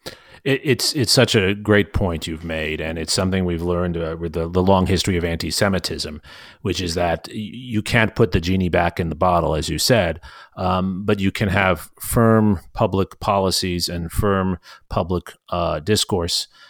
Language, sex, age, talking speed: English, male, 40-59, 185 wpm